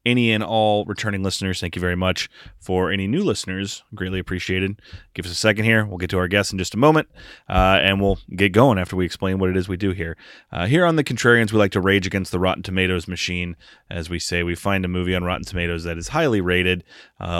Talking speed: 250 wpm